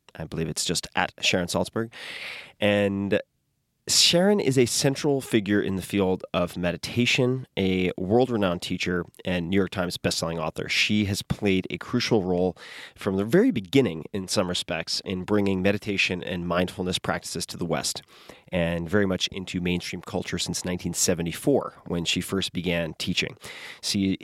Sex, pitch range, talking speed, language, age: male, 90-110 Hz, 155 wpm, English, 30-49